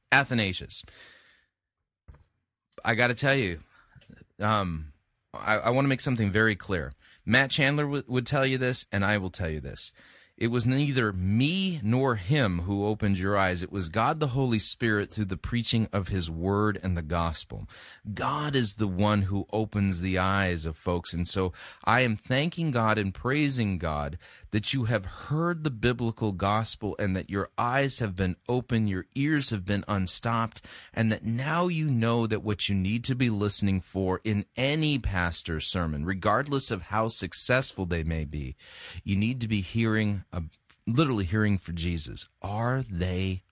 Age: 30-49